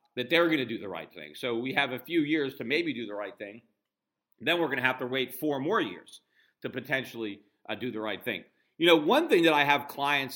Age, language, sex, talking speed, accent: 50-69, English, male, 260 wpm, American